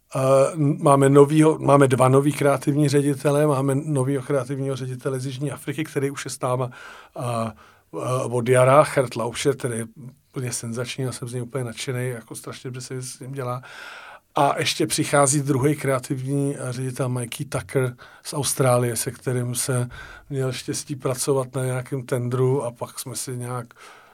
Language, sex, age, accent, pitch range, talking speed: Czech, male, 40-59, native, 130-150 Hz, 165 wpm